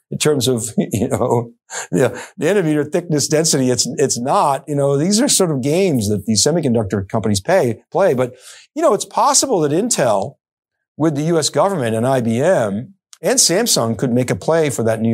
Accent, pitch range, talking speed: American, 115-160 Hz, 180 wpm